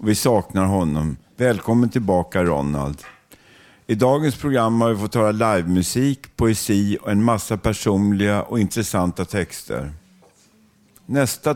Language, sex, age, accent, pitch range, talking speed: Swedish, male, 50-69, native, 90-115 Hz, 120 wpm